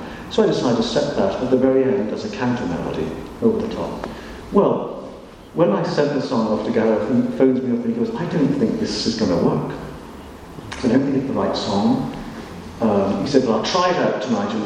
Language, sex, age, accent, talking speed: English, male, 40-59, British, 245 wpm